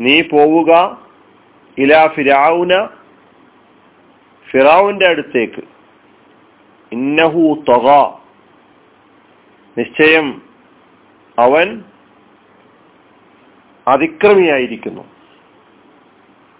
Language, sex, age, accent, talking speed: Malayalam, male, 40-59, native, 40 wpm